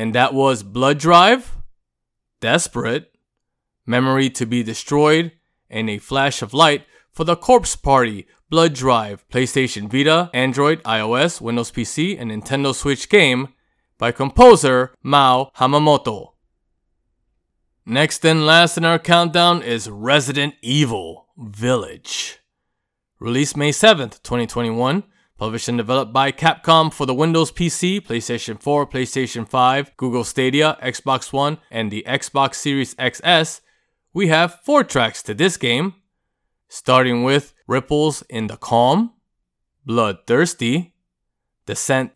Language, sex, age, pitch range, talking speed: English, male, 20-39, 120-160 Hz, 120 wpm